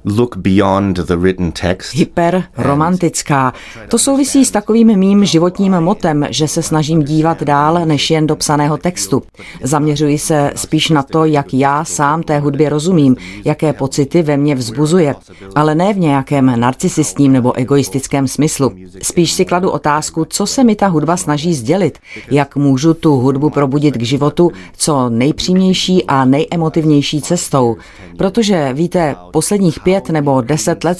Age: 30-49